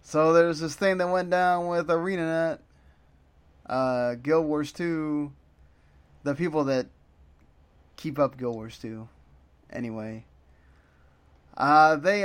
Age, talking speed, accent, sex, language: 20-39, 120 wpm, American, male, English